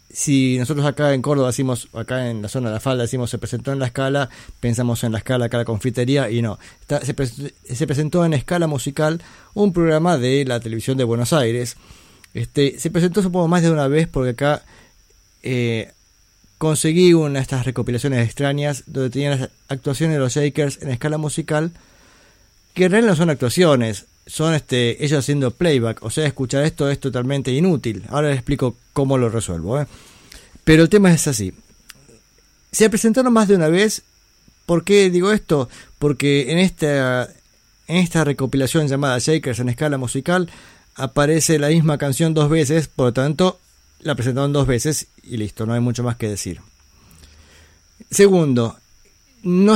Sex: male